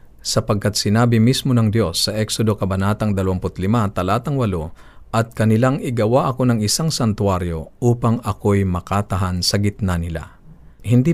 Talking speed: 135 wpm